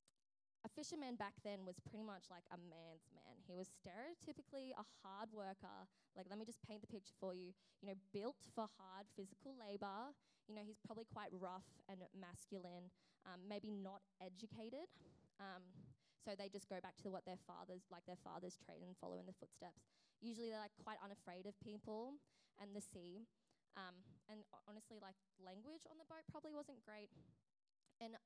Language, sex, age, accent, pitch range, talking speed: English, female, 10-29, Australian, 185-230 Hz, 185 wpm